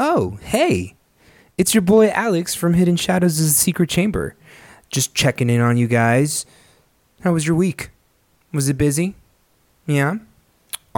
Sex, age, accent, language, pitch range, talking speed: male, 20-39, American, English, 100-120 Hz, 150 wpm